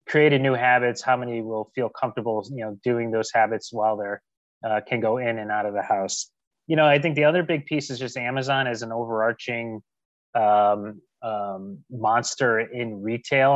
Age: 30-49